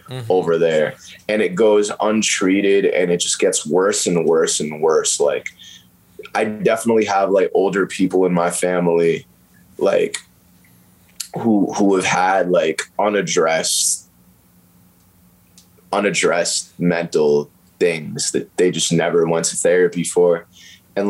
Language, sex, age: English, male, 20-39